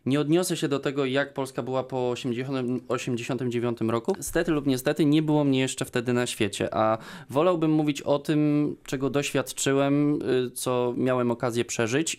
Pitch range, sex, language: 125-155 Hz, male, Polish